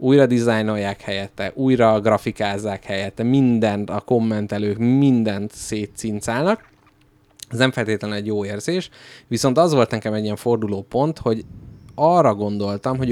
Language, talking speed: Hungarian, 135 wpm